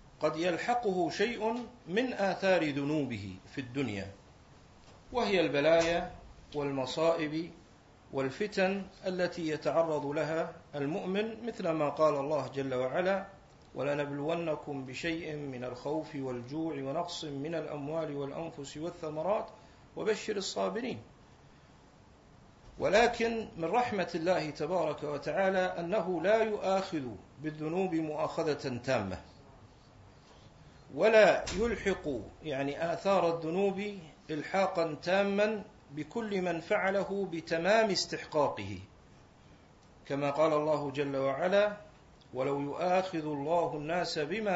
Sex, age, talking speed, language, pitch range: male, 50-69, 90 wpm, Arabic, 140-190 Hz